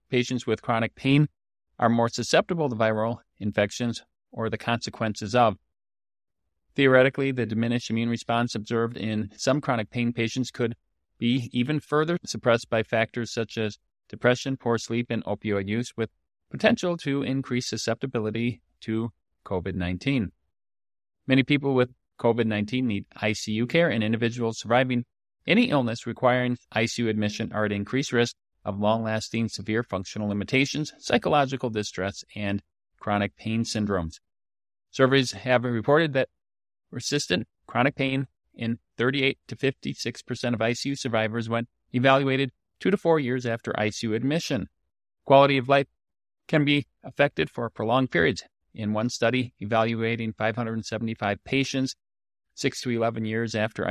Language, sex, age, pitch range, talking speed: English, male, 40-59, 105-130 Hz, 135 wpm